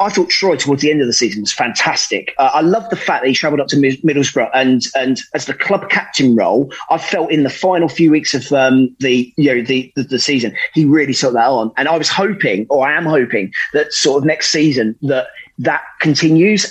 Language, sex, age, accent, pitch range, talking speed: English, male, 30-49, British, 125-150 Hz, 235 wpm